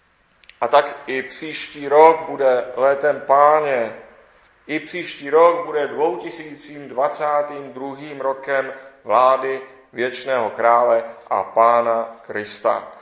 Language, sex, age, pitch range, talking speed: Czech, male, 40-59, 125-150 Hz, 90 wpm